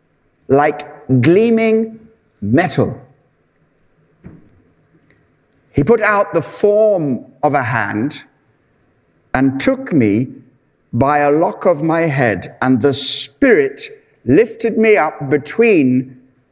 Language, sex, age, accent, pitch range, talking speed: English, male, 60-79, British, 130-165 Hz, 100 wpm